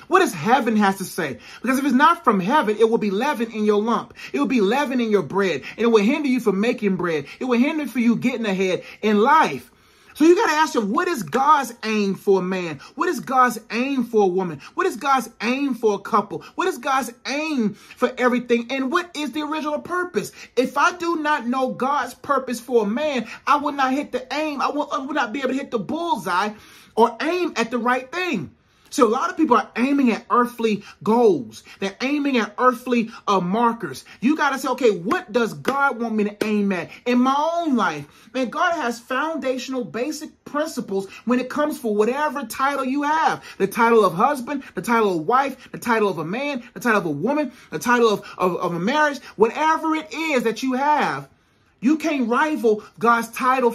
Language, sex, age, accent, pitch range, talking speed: English, male, 30-49, American, 215-285 Hz, 220 wpm